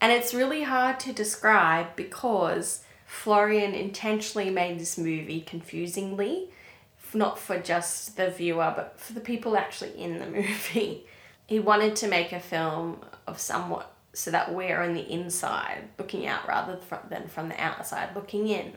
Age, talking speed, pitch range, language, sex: 10-29, 155 wpm, 180-215 Hz, English, female